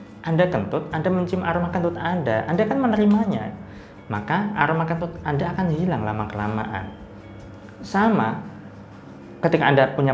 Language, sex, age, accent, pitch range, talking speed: Indonesian, male, 20-39, native, 105-160 Hz, 125 wpm